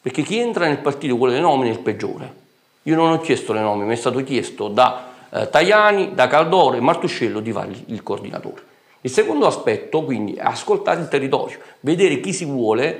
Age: 40-59